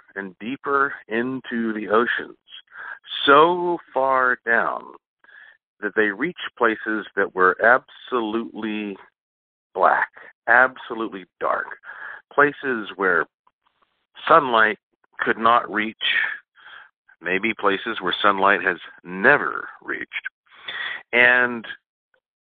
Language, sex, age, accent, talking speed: English, male, 50-69, American, 85 wpm